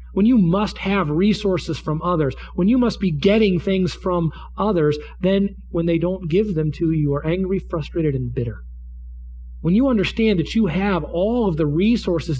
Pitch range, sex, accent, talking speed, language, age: 130-200 Hz, male, American, 190 wpm, English, 40-59